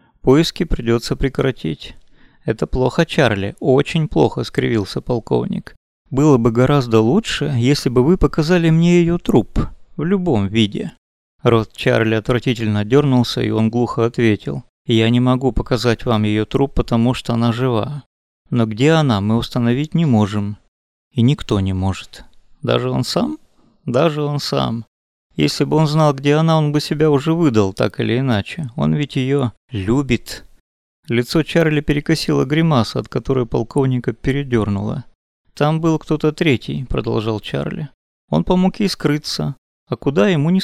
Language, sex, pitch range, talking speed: Russian, male, 110-150 Hz, 150 wpm